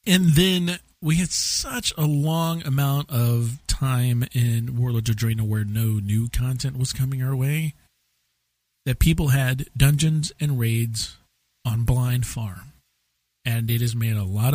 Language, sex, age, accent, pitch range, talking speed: English, male, 40-59, American, 105-145 Hz, 155 wpm